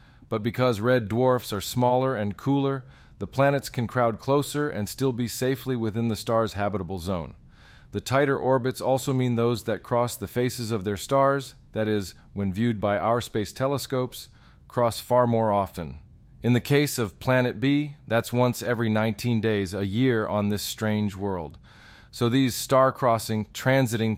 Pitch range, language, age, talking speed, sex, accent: 100-125 Hz, English, 40-59, 170 wpm, male, American